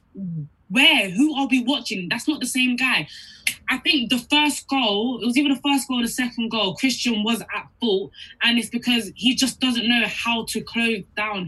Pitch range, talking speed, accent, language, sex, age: 175-250 Hz, 205 wpm, British, English, female, 10-29